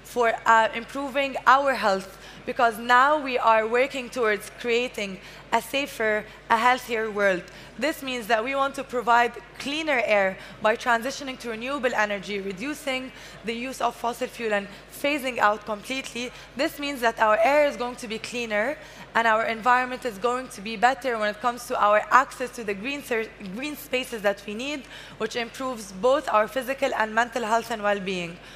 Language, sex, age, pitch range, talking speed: English, female, 20-39, 215-255 Hz, 175 wpm